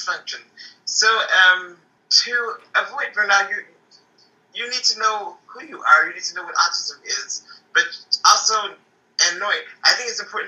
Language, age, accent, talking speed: English, 30-49, American, 165 wpm